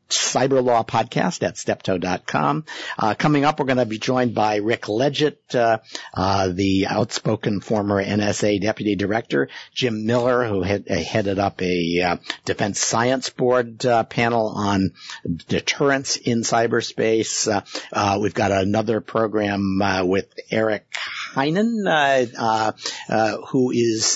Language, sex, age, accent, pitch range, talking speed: English, male, 50-69, American, 100-125 Hz, 135 wpm